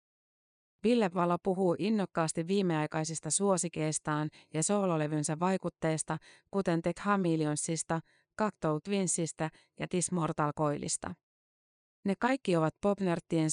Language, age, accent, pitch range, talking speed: Finnish, 30-49, native, 155-185 Hz, 100 wpm